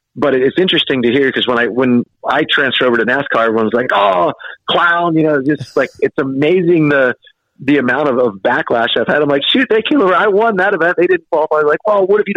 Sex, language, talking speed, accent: male, English, 250 wpm, American